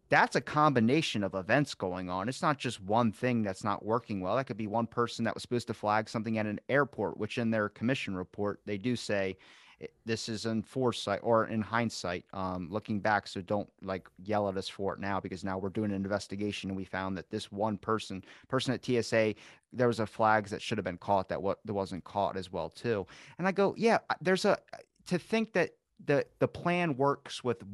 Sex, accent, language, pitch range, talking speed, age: male, American, English, 100-135 Hz, 225 wpm, 30-49